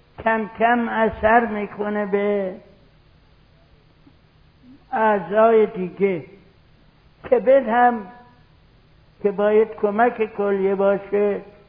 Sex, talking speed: male, 70 wpm